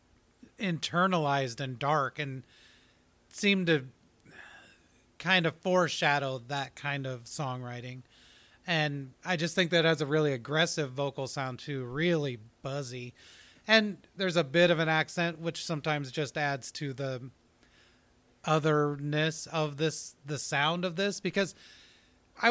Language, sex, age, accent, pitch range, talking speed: English, male, 30-49, American, 135-170 Hz, 130 wpm